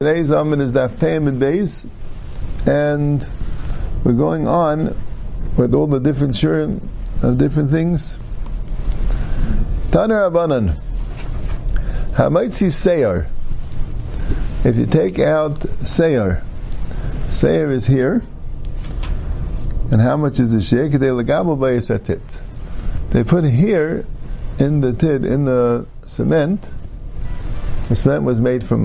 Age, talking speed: 50-69, 100 wpm